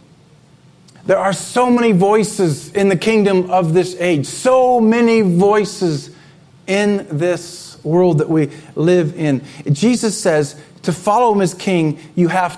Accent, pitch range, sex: American, 160-215 Hz, male